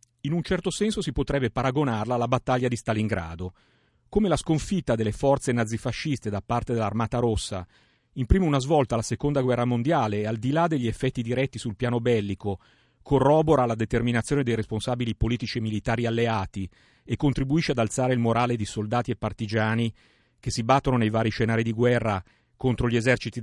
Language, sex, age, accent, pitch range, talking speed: Italian, male, 40-59, native, 110-135 Hz, 175 wpm